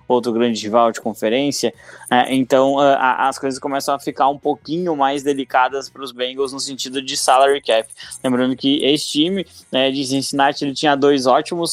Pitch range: 125-150 Hz